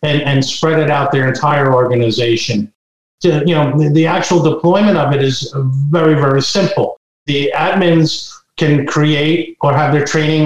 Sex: male